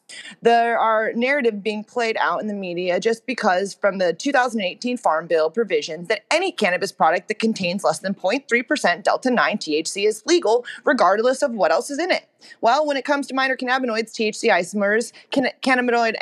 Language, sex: English, female